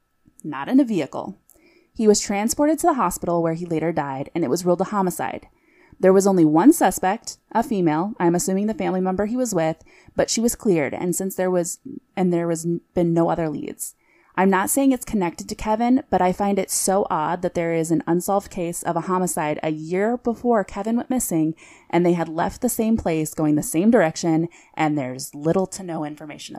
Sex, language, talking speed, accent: female, English, 215 wpm, American